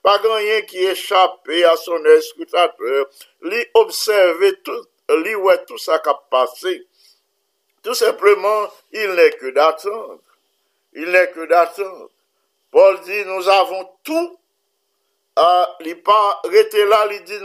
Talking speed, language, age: 125 wpm, English, 50-69